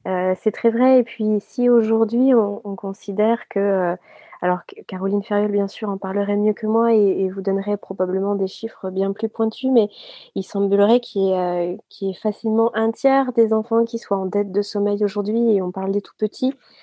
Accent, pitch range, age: French, 190-230 Hz, 30-49